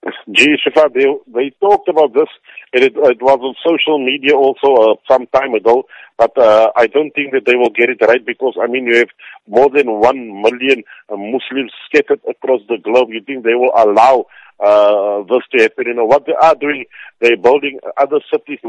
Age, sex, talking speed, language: 50-69, male, 205 wpm, English